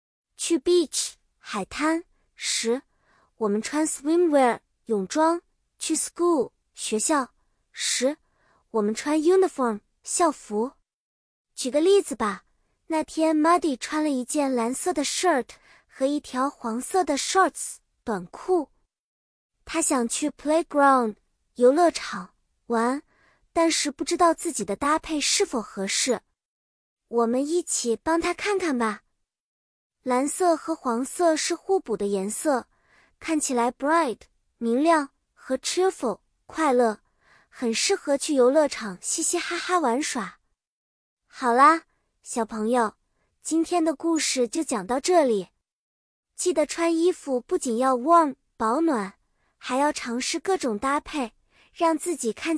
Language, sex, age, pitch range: Chinese, male, 20-39, 245-330 Hz